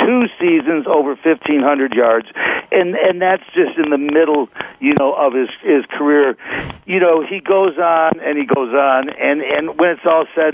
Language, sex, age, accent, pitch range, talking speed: English, male, 60-79, American, 120-155 Hz, 195 wpm